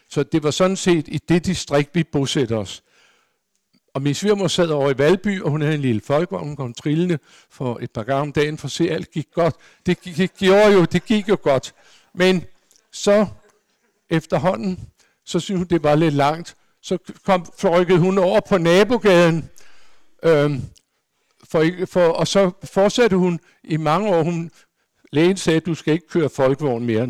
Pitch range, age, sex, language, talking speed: 145-190 Hz, 60-79, male, Danish, 180 wpm